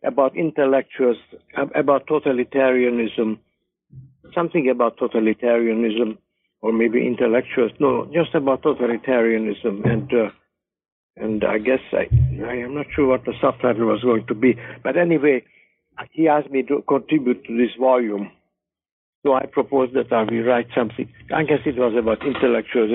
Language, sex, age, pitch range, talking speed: English, male, 60-79, 110-130 Hz, 145 wpm